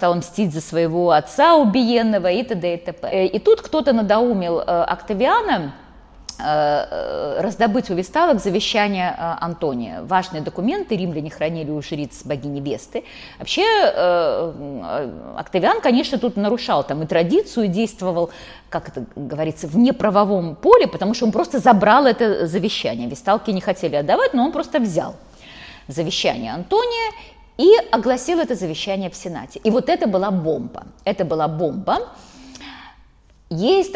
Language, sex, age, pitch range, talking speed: Russian, female, 20-39, 155-250 Hz, 135 wpm